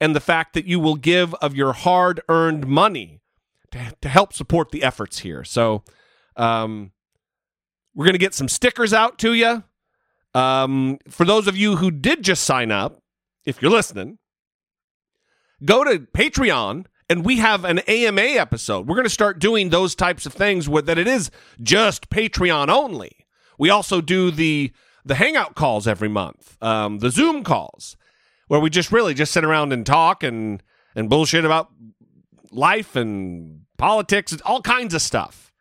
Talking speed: 170 wpm